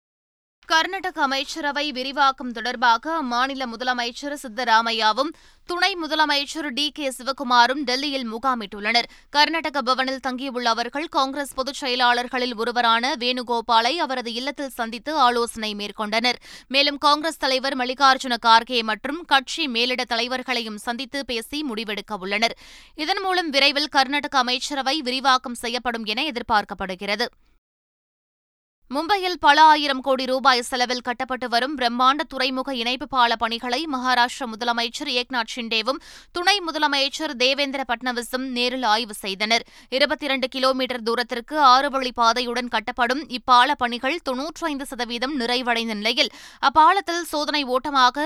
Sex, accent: female, native